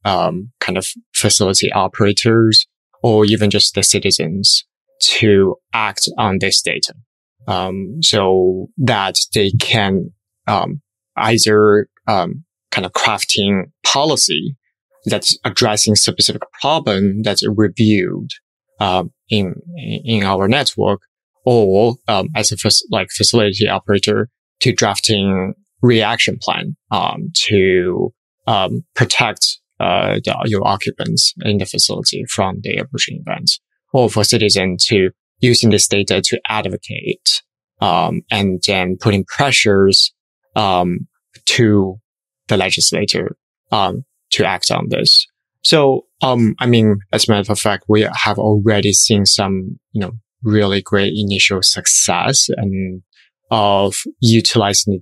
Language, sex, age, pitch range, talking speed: English, male, 20-39, 95-110 Hz, 120 wpm